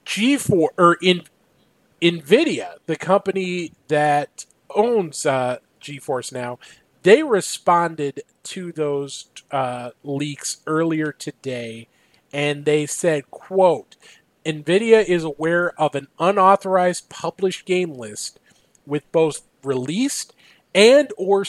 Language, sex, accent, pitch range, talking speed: English, male, American, 150-195 Hz, 105 wpm